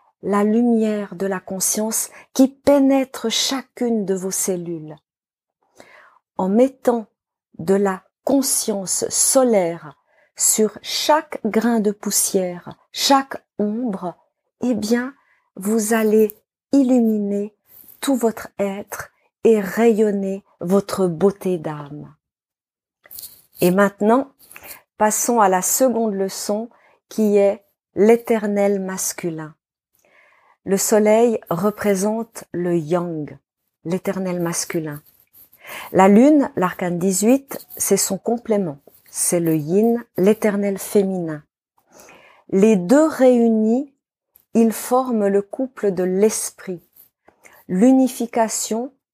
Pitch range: 190-235 Hz